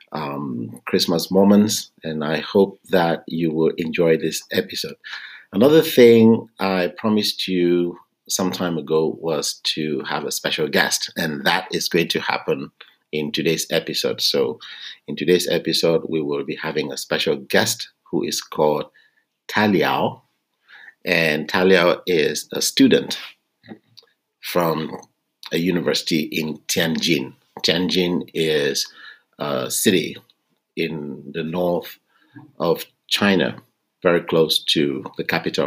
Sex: male